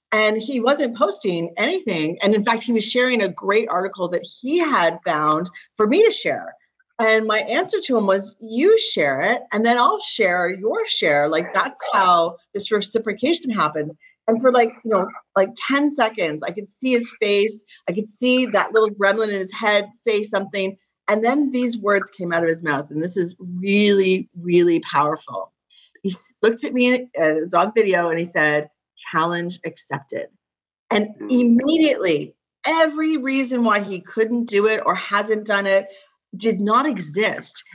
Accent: American